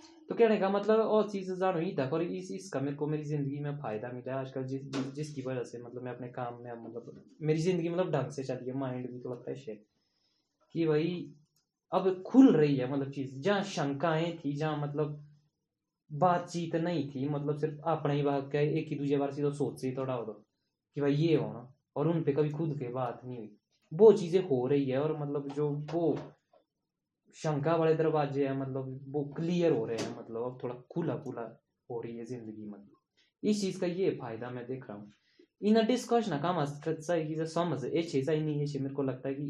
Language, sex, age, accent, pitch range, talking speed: Hindi, male, 20-39, native, 125-155 Hz, 135 wpm